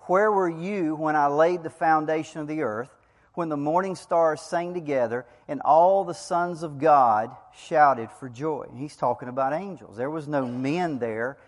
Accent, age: American, 40-59